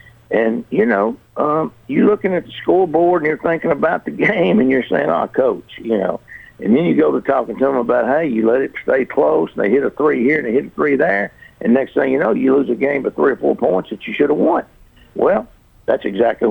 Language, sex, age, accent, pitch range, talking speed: English, male, 60-79, American, 135-220 Hz, 260 wpm